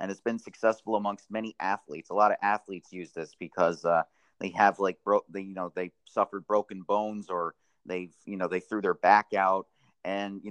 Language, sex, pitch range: English, male, 95-115 Hz